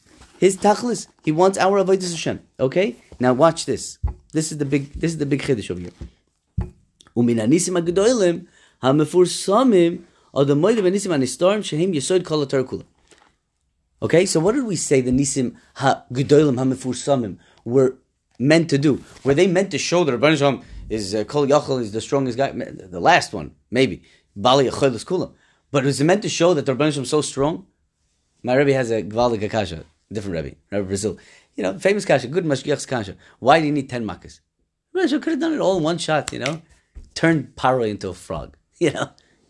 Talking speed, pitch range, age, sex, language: 165 wpm, 110-170 Hz, 30-49, male, English